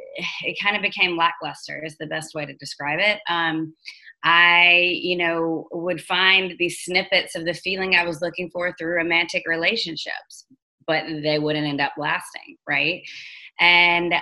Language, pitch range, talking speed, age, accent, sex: English, 150-175 Hz, 160 wpm, 20-39, American, female